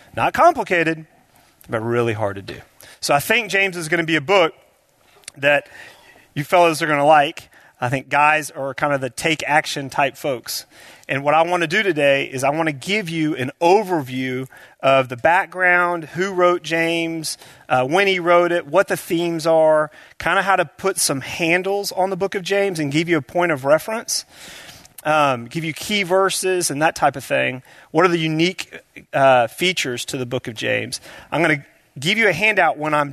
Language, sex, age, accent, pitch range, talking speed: English, male, 30-49, American, 135-175 Hz, 205 wpm